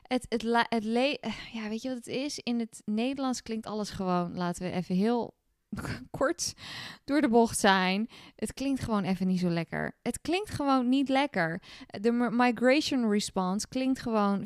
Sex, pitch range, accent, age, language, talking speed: female, 185-235 Hz, Dutch, 20-39, Dutch, 180 wpm